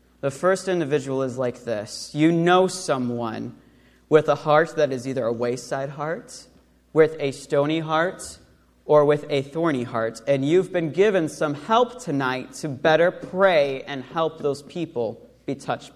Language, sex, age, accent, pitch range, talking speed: English, male, 30-49, American, 135-185 Hz, 160 wpm